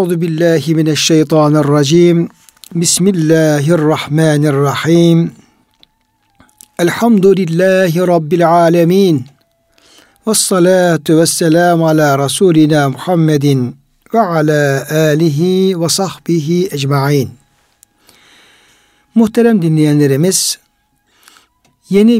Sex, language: male, Turkish